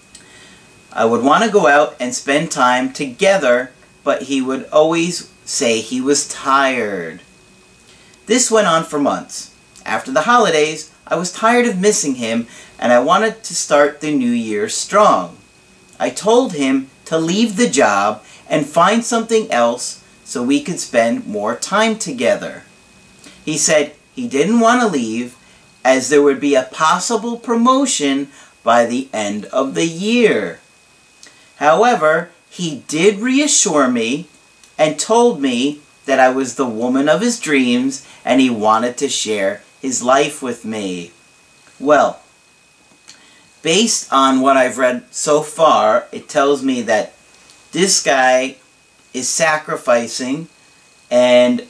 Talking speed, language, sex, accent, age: 140 wpm, English, male, American, 40-59